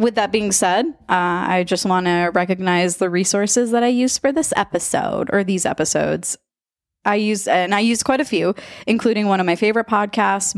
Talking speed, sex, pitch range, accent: 200 wpm, female, 170-205 Hz, American